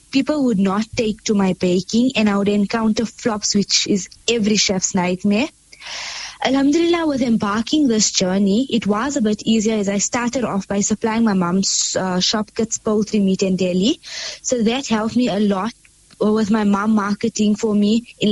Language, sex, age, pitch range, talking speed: English, female, 20-39, 200-235 Hz, 180 wpm